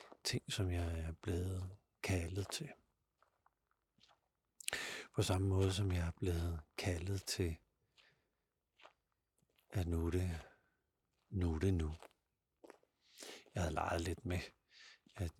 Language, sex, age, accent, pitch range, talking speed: Danish, male, 60-79, native, 85-100 Hz, 110 wpm